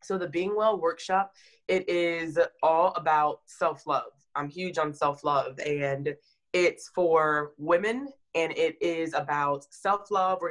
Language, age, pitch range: English, 20-39, 155-190 Hz